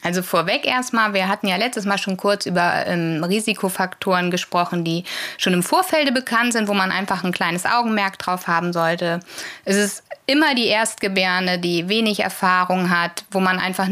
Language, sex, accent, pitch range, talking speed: German, female, German, 180-215 Hz, 175 wpm